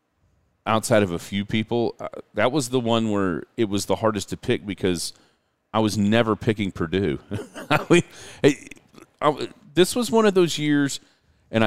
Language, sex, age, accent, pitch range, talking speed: English, male, 40-59, American, 100-140 Hz, 175 wpm